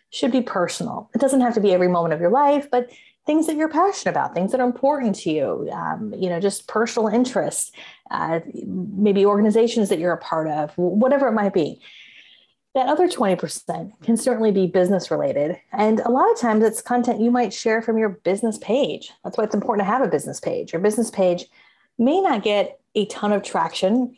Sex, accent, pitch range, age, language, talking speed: female, American, 175-235 Hz, 30-49, English, 210 wpm